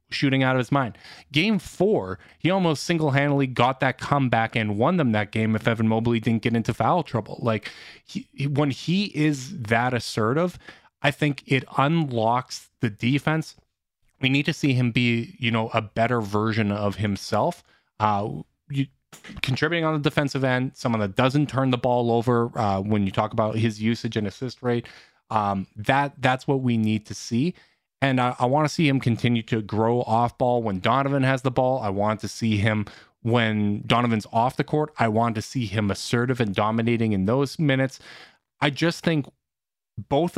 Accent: American